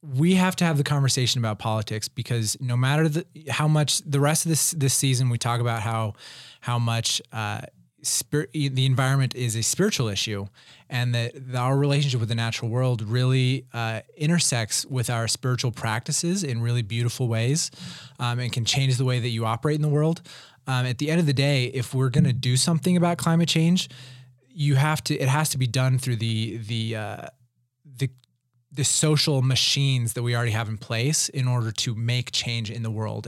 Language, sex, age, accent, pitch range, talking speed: English, male, 20-39, American, 120-145 Hz, 195 wpm